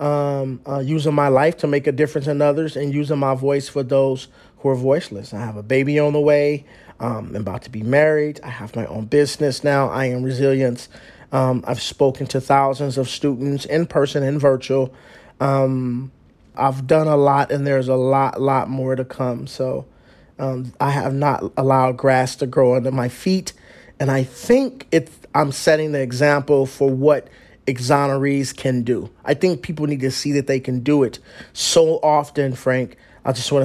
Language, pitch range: English, 130-145 Hz